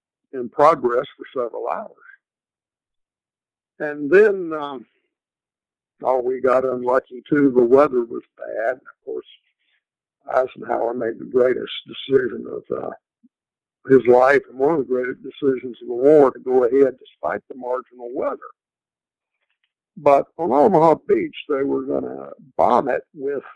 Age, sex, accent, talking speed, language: 60-79, male, American, 140 wpm, English